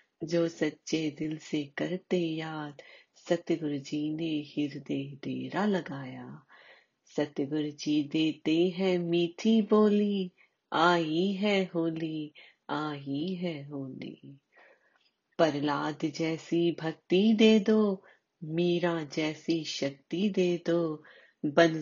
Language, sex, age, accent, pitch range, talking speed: Hindi, female, 30-49, native, 140-165 Hz, 85 wpm